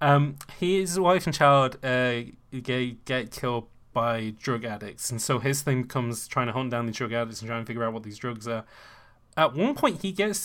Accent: British